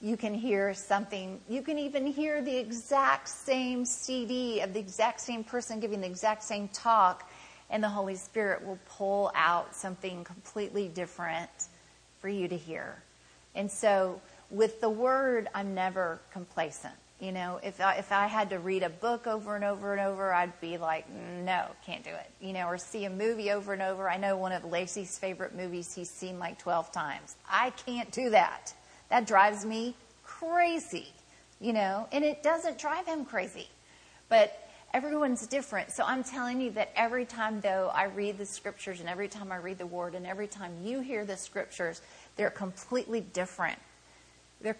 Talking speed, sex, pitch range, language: 180 wpm, female, 185-230 Hz, English